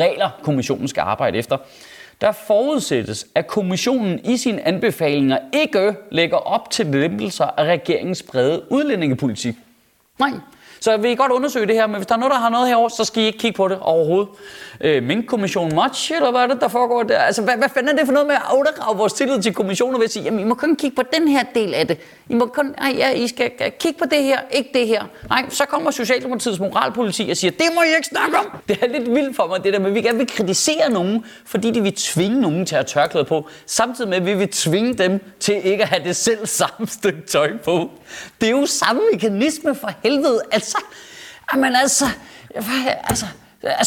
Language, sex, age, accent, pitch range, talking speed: Danish, male, 30-49, native, 200-265 Hz, 225 wpm